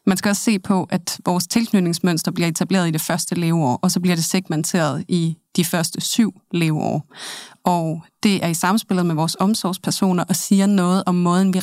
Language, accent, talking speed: Danish, native, 195 wpm